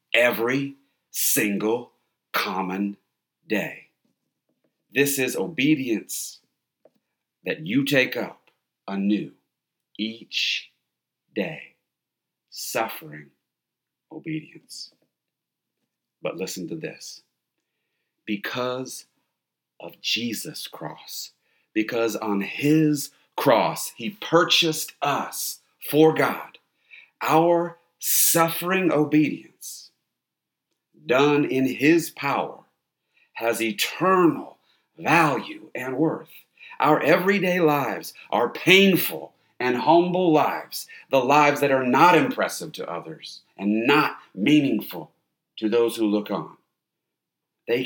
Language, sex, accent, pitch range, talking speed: English, male, American, 110-160 Hz, 90 wpm